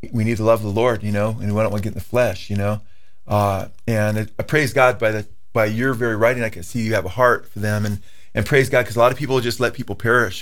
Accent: American